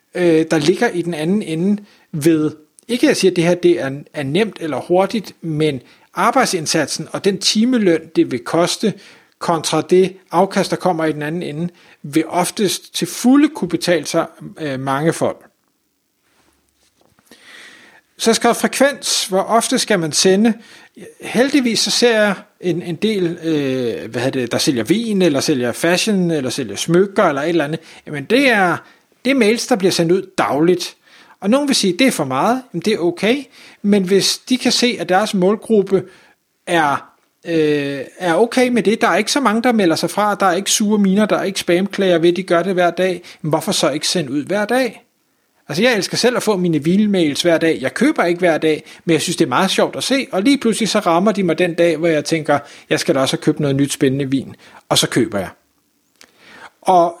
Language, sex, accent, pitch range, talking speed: Danish, male, native, 165-215 Hz, 205 wpm